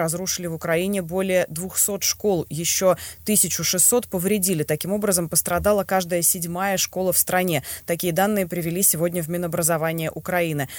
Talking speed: 135 wpm